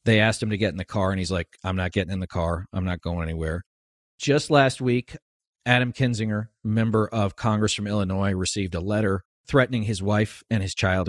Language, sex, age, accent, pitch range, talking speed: English, male, 50-69, American, 95-115 Hz, 215 wpm